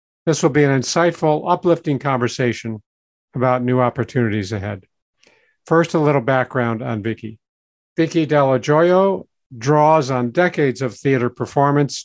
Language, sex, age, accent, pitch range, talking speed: English, male, 50-69, American, 120-150 Hz, 130 wpm